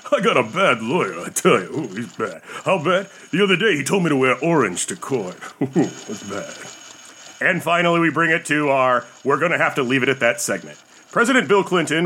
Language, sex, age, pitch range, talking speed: English, male, 40-59, 140-195 Hz, 235 wpm